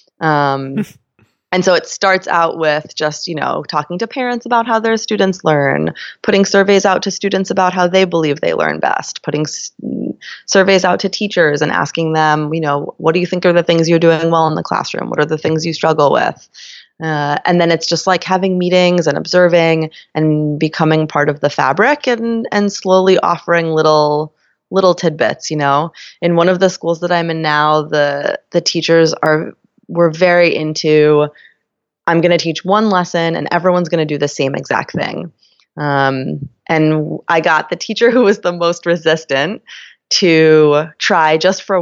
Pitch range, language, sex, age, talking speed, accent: 150-185 Hz, English, female, 20-39, 190 wpm, American